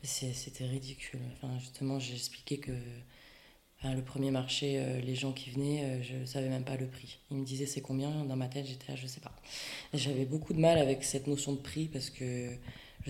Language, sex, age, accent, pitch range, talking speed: French, female, 20-39, French, 130-145 Hz, 225 wpm